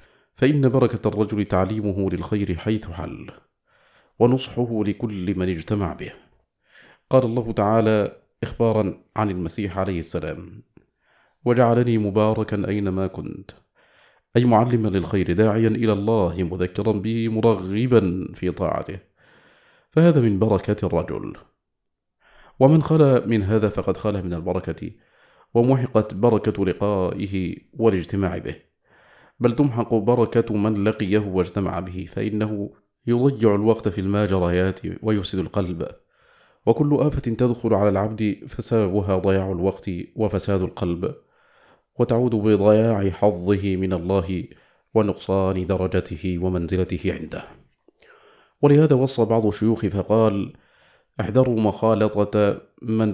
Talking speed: 105 wpm